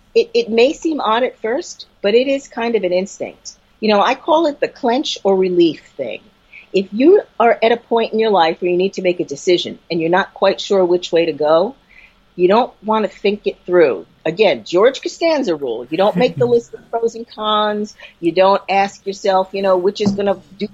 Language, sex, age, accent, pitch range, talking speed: English, female, 40-59, American, 170-225 Hz, 230 wpm